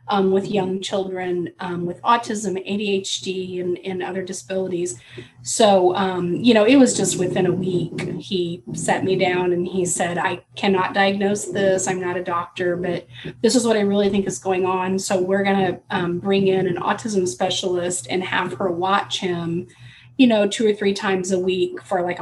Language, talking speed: English, 195 wpm